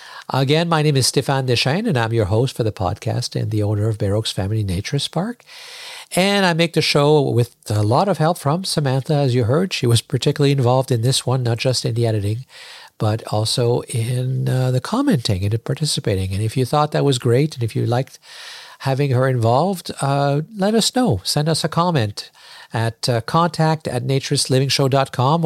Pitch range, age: 115-150 Hz, 50-69